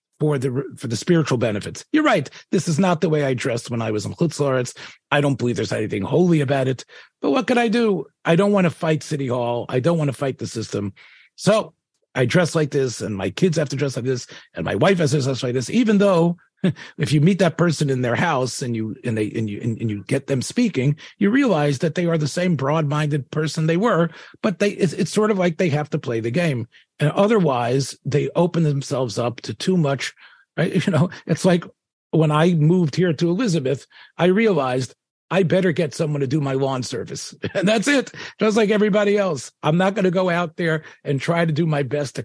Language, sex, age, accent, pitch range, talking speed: English, male, 40-59, American, 130-175 Hz, 235 wpm